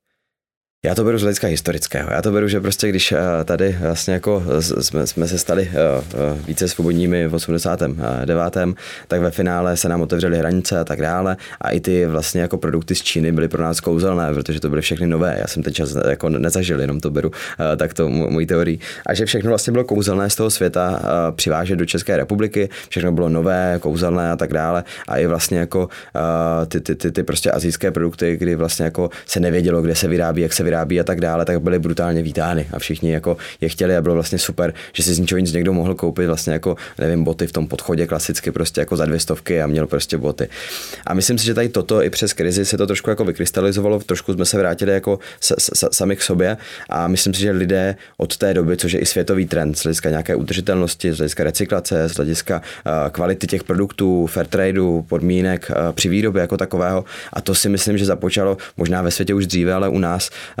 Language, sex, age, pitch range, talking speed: Czech, male, 20-39, 80-95 Hz, 215 wpm